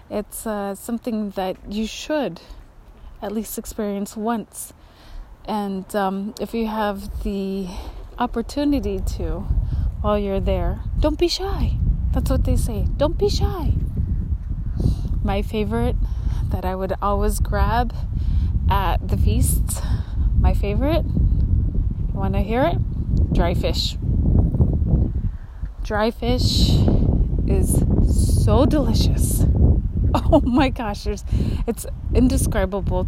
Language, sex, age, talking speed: English, female, 20-39, 110 wpm